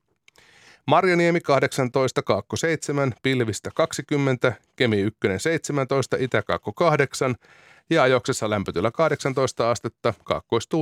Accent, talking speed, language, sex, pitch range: native, 85 wpm, Finnish, male, 110-140 Hz